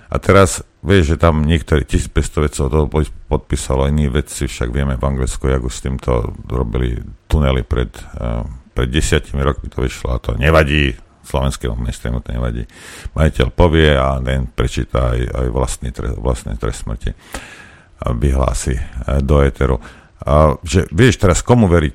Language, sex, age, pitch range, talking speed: Slovak, male, 50-69, 70-90 Hz, 150 wpm